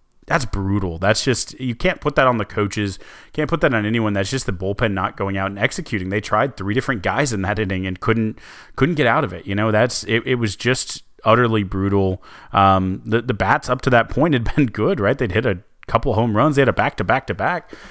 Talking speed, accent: 240 wpm, American